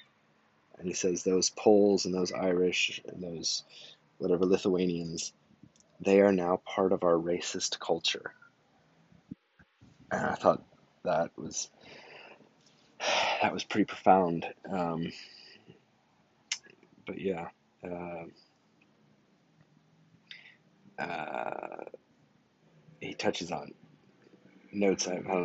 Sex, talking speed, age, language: male, 95 wpm, 20-39, English